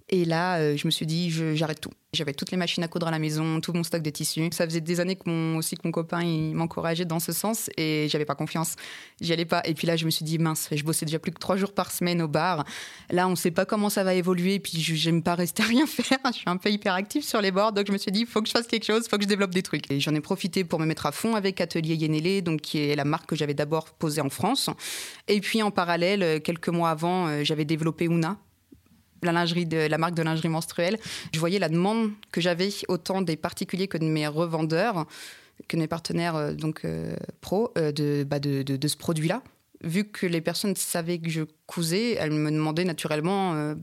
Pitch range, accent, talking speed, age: 160-190 Hz, French, 265 wpm, 20-39